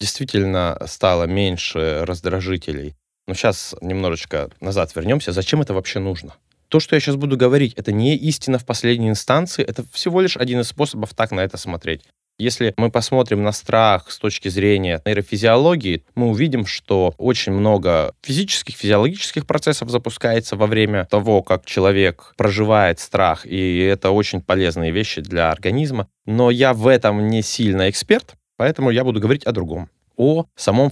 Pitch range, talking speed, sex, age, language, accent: 95-130 Hz, 160 wpm, male, 20-39, Russian, native